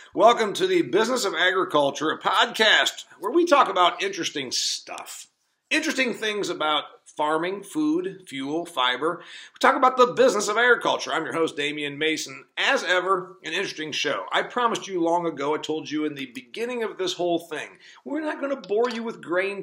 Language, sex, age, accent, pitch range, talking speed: English, male, 40-59, American, 160-265 Hz, 180 wpm